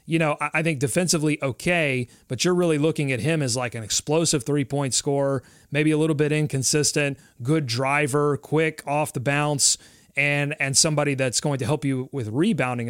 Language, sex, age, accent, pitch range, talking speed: English, male, 30-49, American, 130-160 Hz, 185 wpm